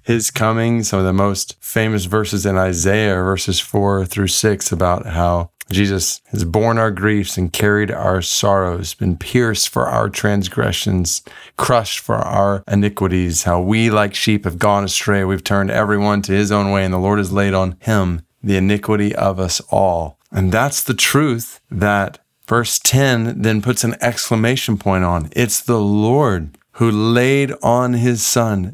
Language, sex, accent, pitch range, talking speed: English, male, American, 100-125 Hz, 170 wpm